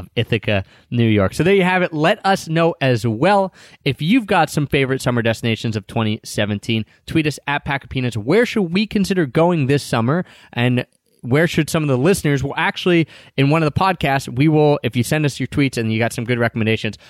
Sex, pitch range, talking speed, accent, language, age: male, 115-165 Hz, 220 wpm, American, English, 20-39